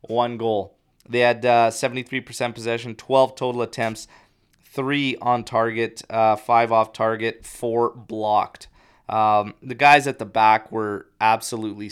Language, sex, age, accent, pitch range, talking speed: English, male, 20-39, American, 105-130 Hz, 135 wpm